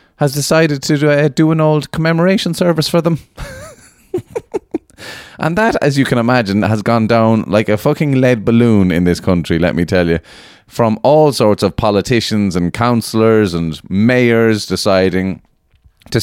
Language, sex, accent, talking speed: English, male, Irish, 160 wpm